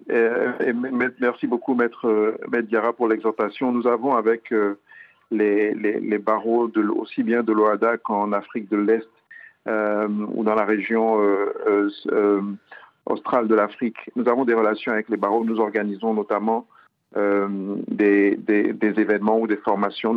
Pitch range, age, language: 105-120 Hz, 50-69, French